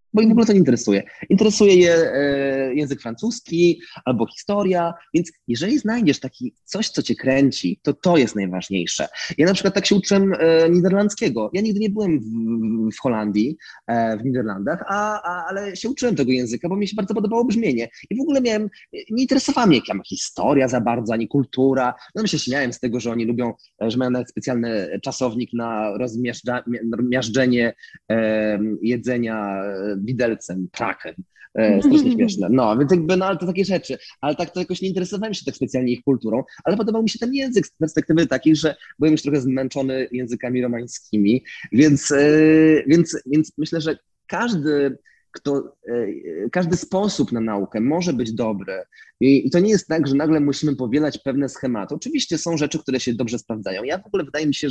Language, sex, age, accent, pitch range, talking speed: Polish, male, 20-39, native, 120-190 Hz, 180 wpm